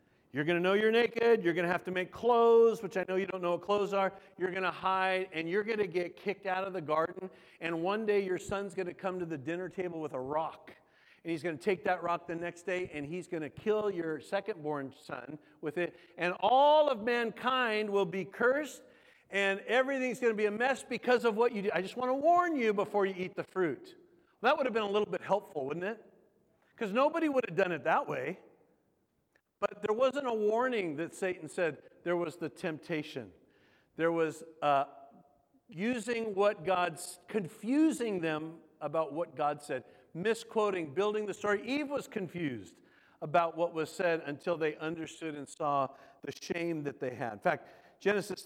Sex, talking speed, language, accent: male, 205 wpm, English, American